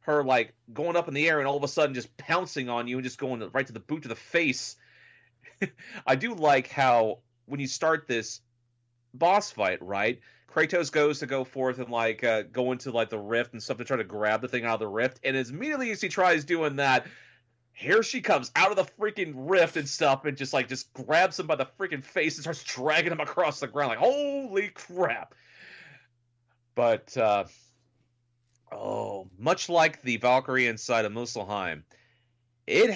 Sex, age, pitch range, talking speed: male, 30-49, 115-145 Hz, 200 wpm